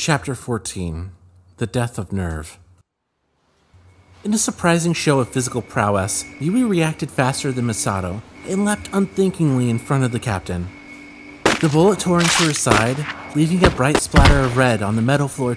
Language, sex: English, male